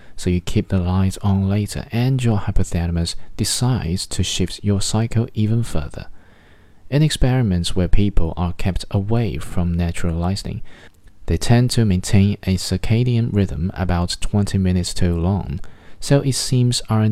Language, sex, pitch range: Chinese, male, 90-110 Hz